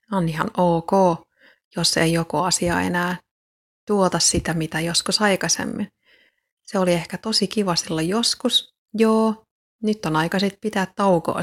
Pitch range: 175-205 Hz